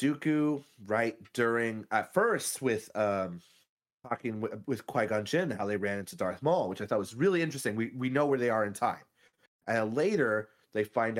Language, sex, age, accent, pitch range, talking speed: English, male, 30-49, American, 100-140 Hz, 195 wpm